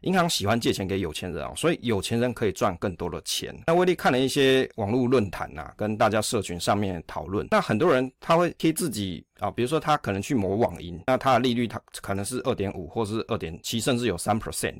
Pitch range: 100-130 Hz